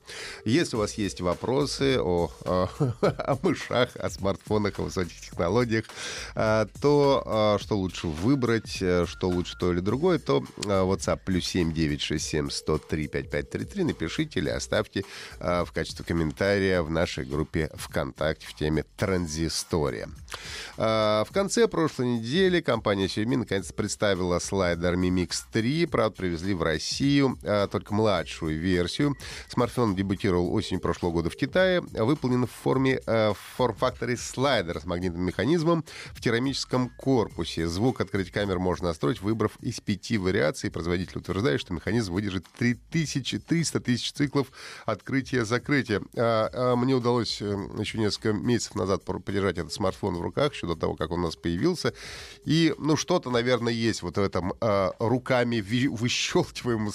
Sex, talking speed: male, 135 wpm